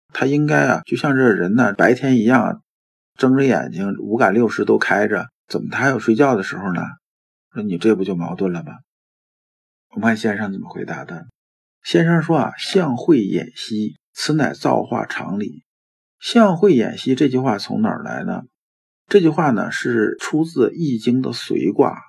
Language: Chinese